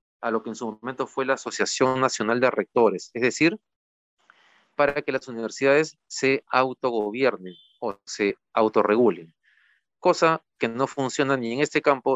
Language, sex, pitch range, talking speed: Spanish, male, 110-140 Hz, 155 wpm